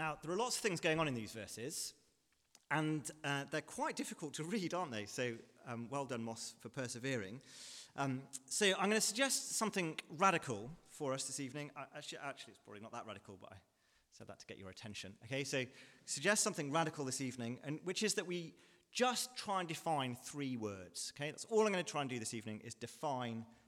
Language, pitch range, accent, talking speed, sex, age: English, 105-155 Hz, British, 220 wpm, male, 30-49